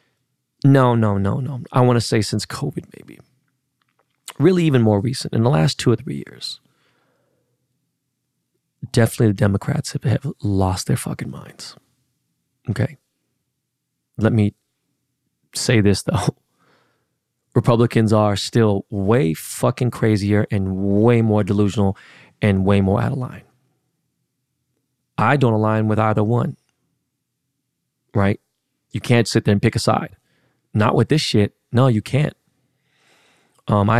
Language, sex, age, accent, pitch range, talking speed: English, male, 30-49, American, 105-135 Hz, 135 wpm